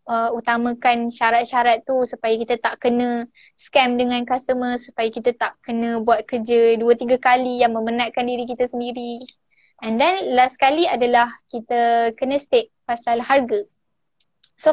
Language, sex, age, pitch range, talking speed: Malay, female, 10-29, 235-275 Hz, 145 wpm